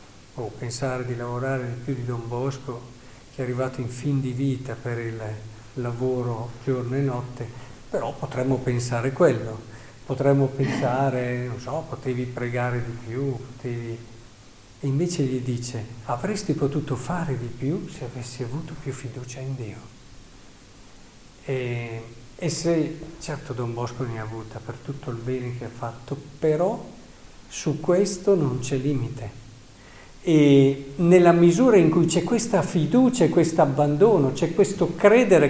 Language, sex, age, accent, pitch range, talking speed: Italian, male, 50-69, native, 115-140 Hz, 145 wpm